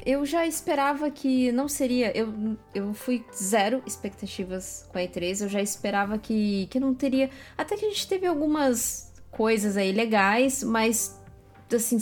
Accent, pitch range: Brazilian, 205-265 Hz